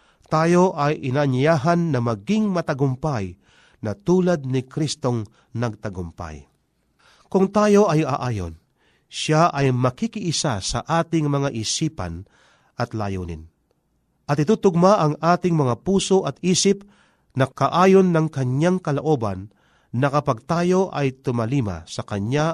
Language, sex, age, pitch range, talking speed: Filipino, male, 40-59, 120-170 Hz, 115 wpm